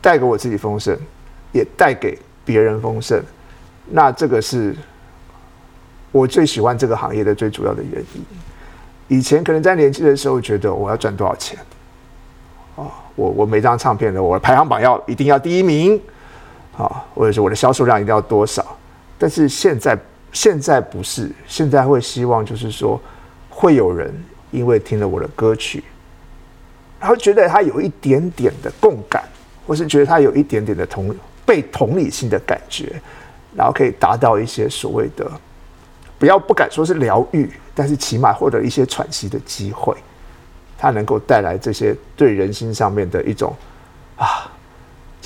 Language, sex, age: Chinese, male, 50-69